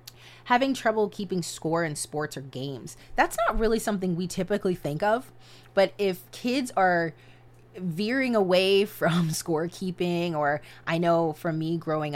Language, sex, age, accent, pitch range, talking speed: English, female, 20-39, American, 145-175 Hz, 150 wpm